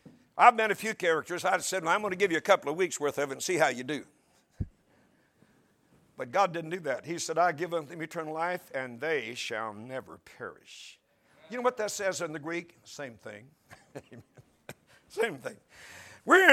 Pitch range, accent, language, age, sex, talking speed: 155-225 Hz, American, English, 60-79, male, 200 wpm